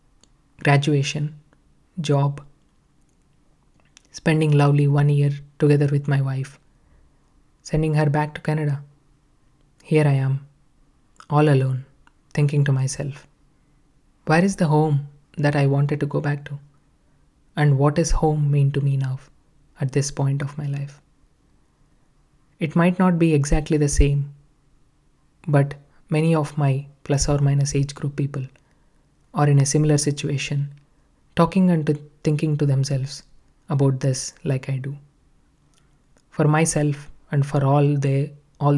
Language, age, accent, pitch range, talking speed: English, 20-39, Indian, 140-150 Hz, 135 wpm